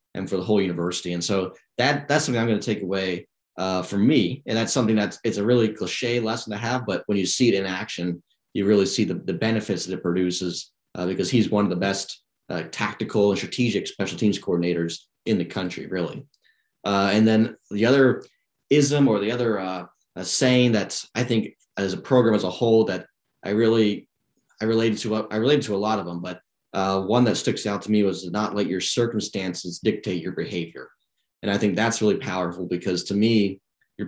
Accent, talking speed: American, 220 wpm